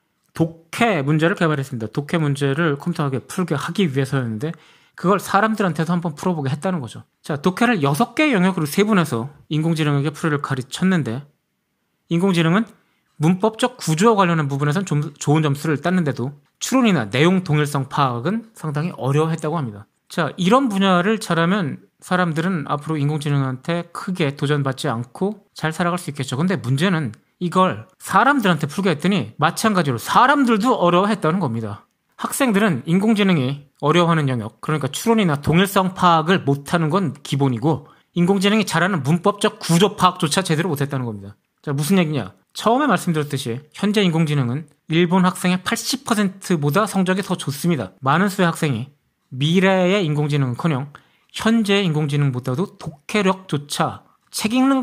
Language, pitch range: Korean, 145-195 Hz